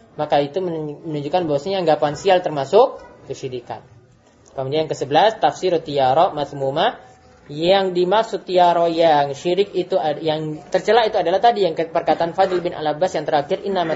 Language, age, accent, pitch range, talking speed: Indonesian, 20-39, native, 155-215 Hz, 140 wpm